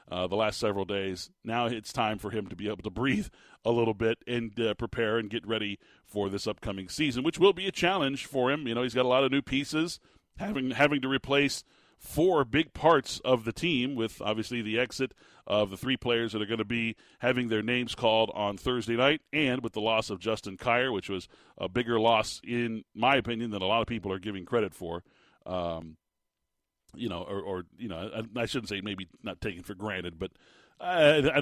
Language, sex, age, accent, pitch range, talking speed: English, male, 40-59, American, 105-130 Hz, 225 wpm